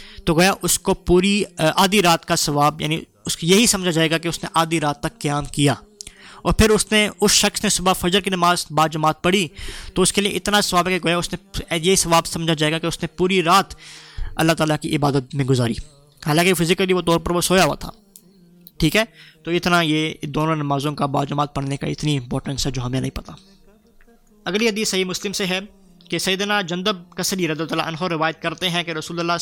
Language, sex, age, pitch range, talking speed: Urdu, male, 20-39, 155-185 Hz, 220 wpm